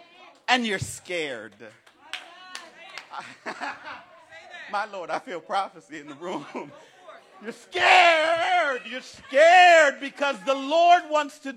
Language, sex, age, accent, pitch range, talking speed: English, male, 40-59, American, 250-325 Hz, 105 wpm